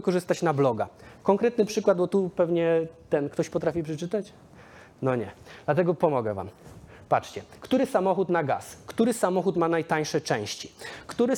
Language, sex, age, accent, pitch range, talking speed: Polish, male, 20-39, native, 165-200 Hz, 150 wpm